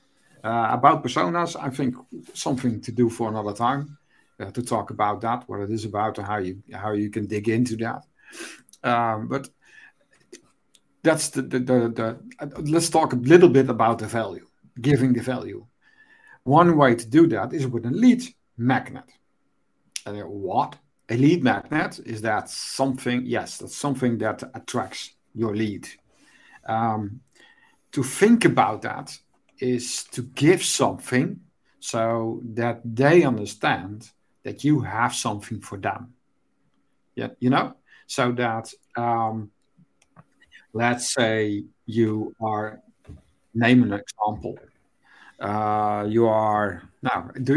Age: 50-69